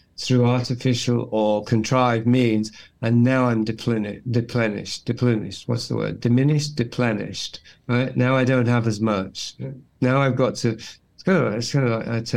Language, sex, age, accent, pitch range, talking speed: English, male, 50-69, British, 110-125 Hz, 170 wpm